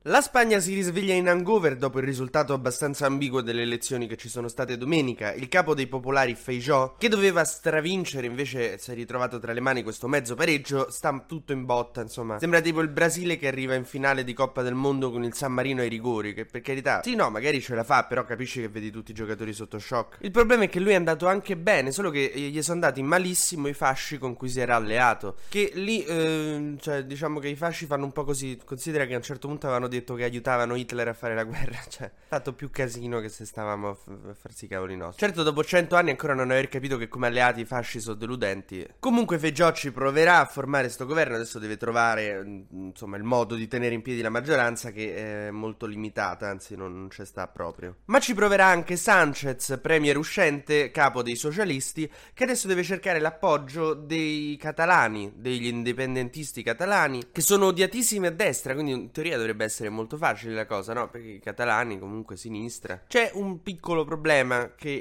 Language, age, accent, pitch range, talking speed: Italian, 20-39, native, 120-155 Hz, 215 wpm